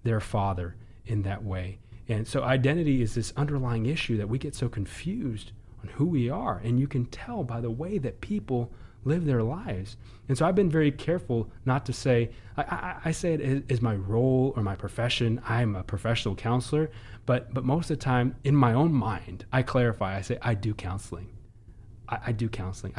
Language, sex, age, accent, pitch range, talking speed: English, male, 30-49, American, 105-130 Hz, 205 wpm